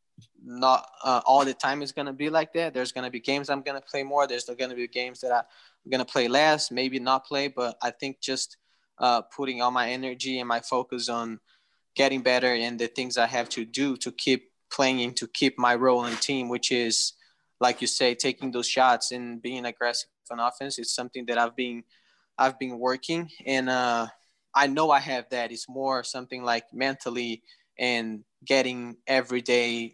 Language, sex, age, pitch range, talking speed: English, male, 20-39, 120-130 Hz, 205 wpm